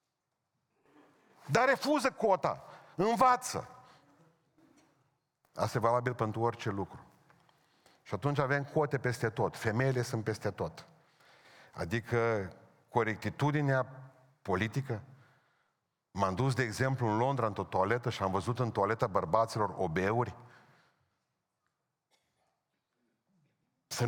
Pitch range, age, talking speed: 120-165 Hz, 50-69, 95 wpm